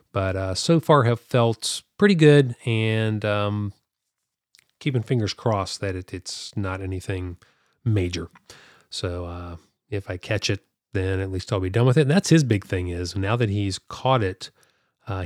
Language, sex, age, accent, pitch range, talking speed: English, male, 30-49, American, 95-125 Hz, 175 wpm